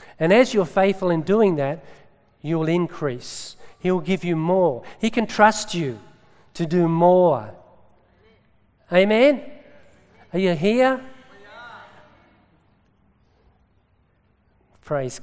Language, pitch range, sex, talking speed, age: English, 135-175 Hz, male, 100 wpm, 50-69